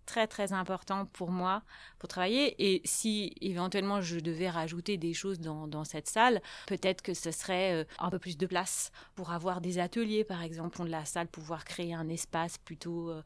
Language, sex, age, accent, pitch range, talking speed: French, female, 30-49, French, 175-215 Hz, 190 wpm